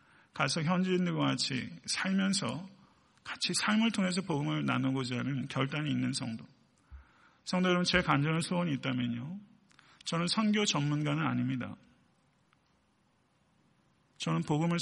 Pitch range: 135-180 Hz